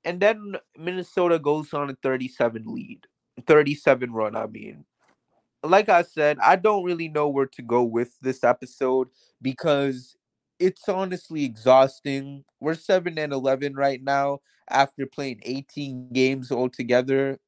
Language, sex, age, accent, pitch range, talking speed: English, male, 20-39, American, 130-165 Hz, 140 wpm